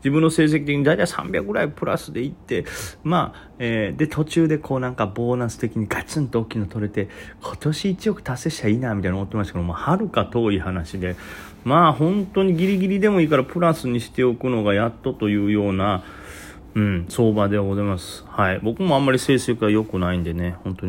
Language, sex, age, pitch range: Japanese, male, 30-49, 95-125 Hz